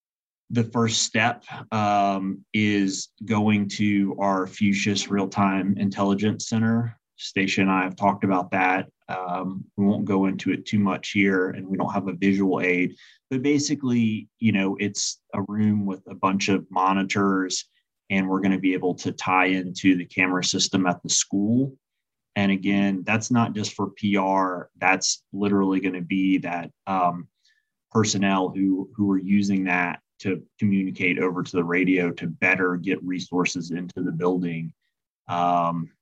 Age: 30-49